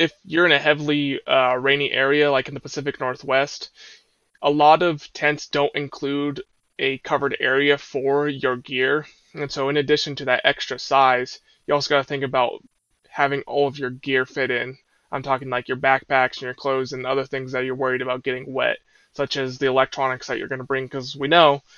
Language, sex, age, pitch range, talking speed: English, male, 20-39, 130-145 Hz, 205 wpm